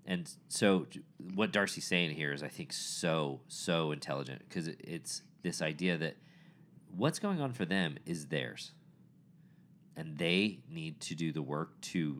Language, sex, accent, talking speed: English, male, American, 155 wpm